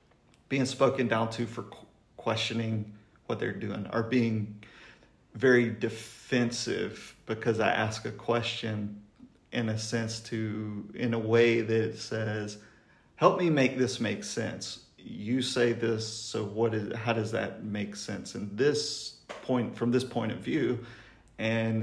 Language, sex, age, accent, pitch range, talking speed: English, male, 40-59, American, 105-120 Hz, 145 wpm